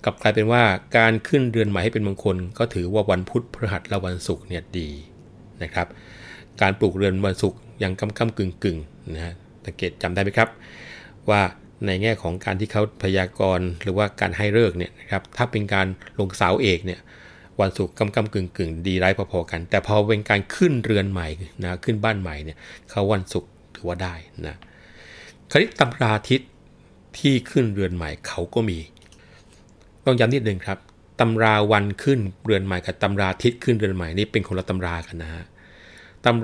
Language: Thai